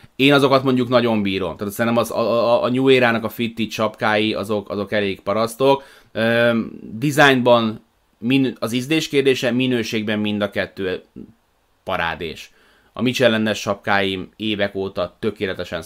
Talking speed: 130 wpm